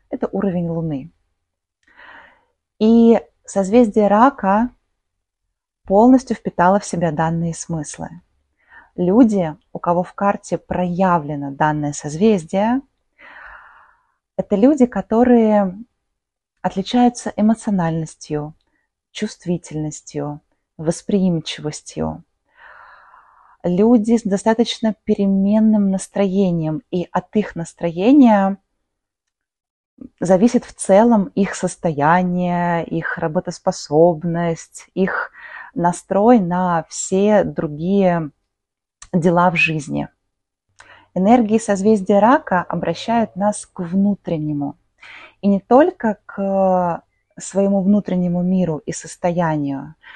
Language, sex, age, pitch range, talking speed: Russian, female, 20-39, 170-215 Hz, 80 wpm